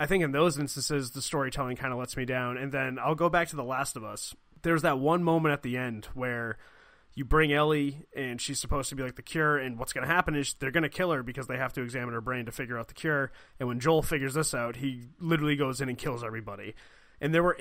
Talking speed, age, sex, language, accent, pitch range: 275 wpm, 20-39, male, English, American, 125-145 Hz